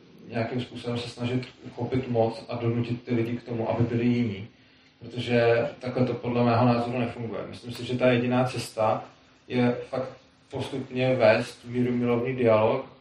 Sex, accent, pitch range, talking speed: male, native, 120-130 Hz, 155 wpm